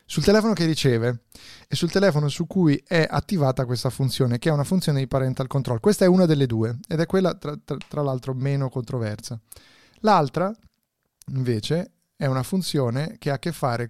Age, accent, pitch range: 30-49, native, 125-165 Hz